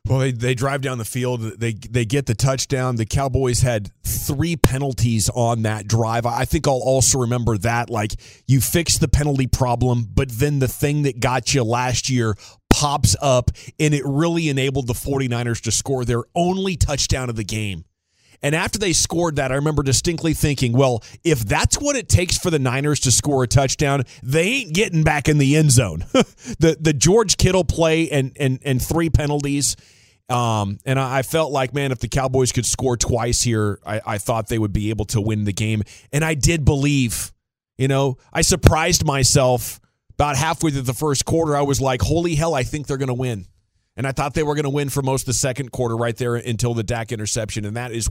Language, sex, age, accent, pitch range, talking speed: English, male, 30-49, American, 115-145 Hz, 215 wpm